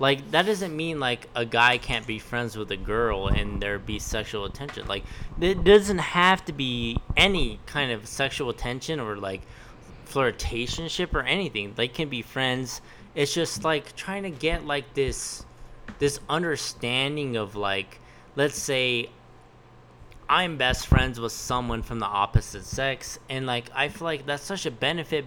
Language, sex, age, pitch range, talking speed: English, male, 20-39, 110-150 Hz, 165 wpm